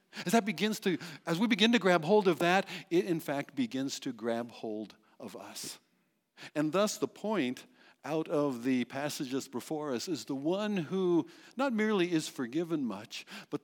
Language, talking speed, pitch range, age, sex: English, 165 wpm, 120-200 Hz, 60-79, male